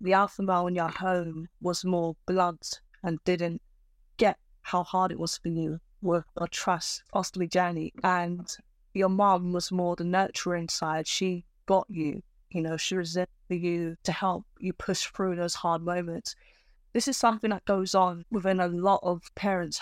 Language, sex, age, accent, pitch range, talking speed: English, female, 20-39, British, 170-190 Hz, 180 wpm